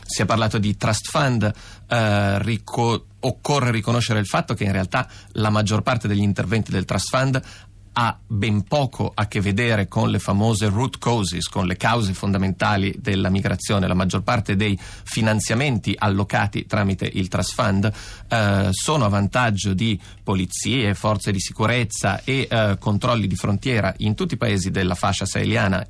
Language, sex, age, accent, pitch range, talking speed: Italian, male, 30-49, native, 100-110 Hz, 160 wpm